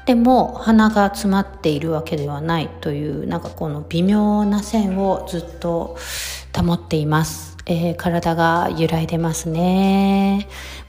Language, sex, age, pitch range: Japanese, female, 40-59, 150-205 Hz